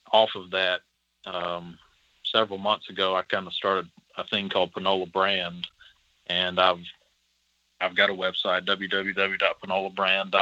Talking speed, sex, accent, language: 130 wpm, male, American, English